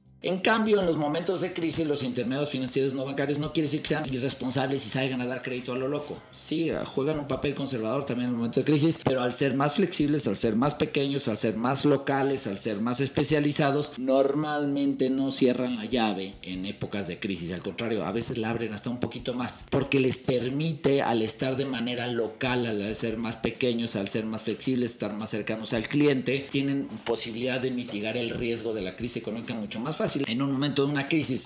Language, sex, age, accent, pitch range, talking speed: Spanish, male, 50-69, Mexican, 115-145 Hz, 215 wpm